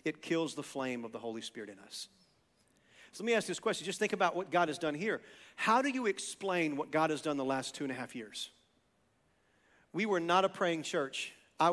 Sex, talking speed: male, 235 wpm